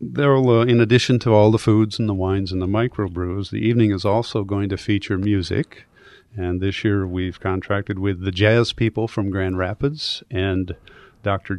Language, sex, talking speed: English, male, 185 wpm